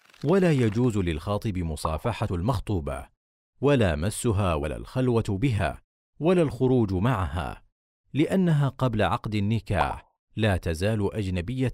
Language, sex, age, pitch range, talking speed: Arabic, male, 40-59, 90-130 Hz, 100 wpm